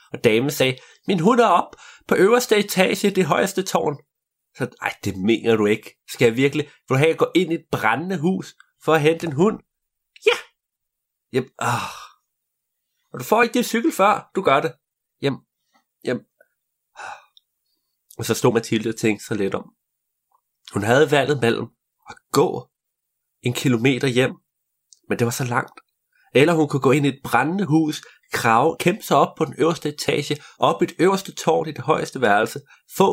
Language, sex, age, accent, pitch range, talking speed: Danish, male, 30-49, native, 125-180 Hz, 185 wpm